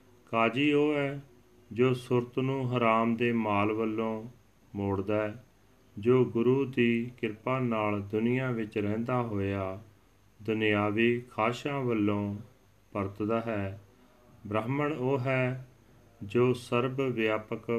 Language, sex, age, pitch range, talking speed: Punjabi, male, 40-59, 100-120 Hz, 110 wpm